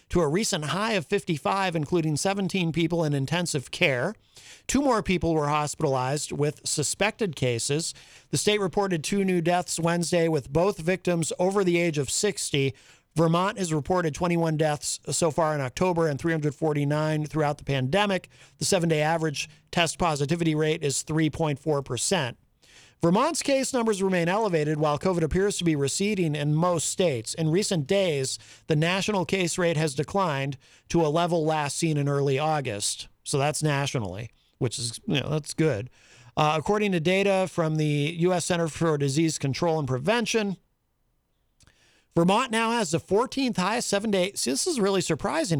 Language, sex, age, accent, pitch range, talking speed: English, male, 50-69, American, 150-190 Hz, 160 wpm